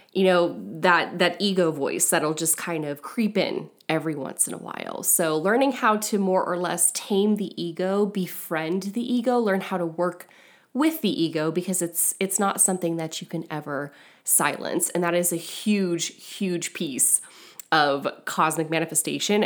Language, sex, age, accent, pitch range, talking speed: English, female, 20-39, American, 170-215 Hz, 175 wpm